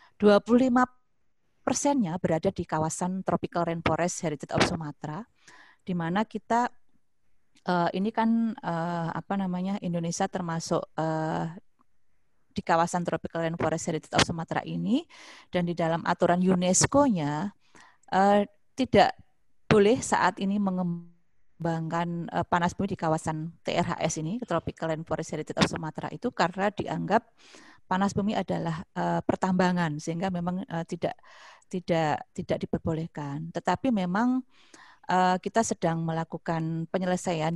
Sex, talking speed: female, 110 wpm